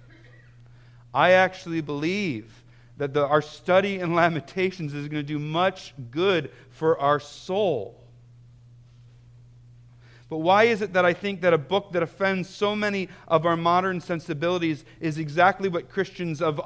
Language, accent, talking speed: English, American, 145 wpm